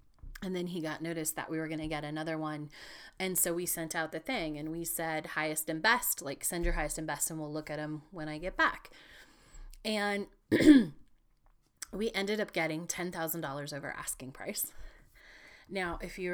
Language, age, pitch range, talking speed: English, 20-39, 160-195 Hz, 195 wpm